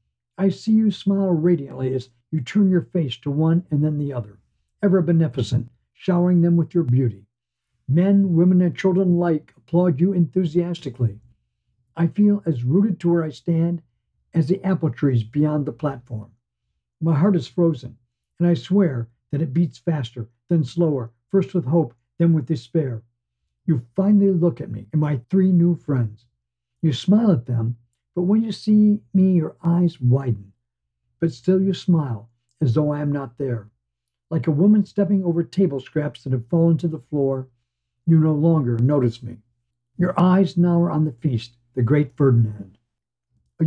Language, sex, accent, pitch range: English, male, American, 120-175 Hz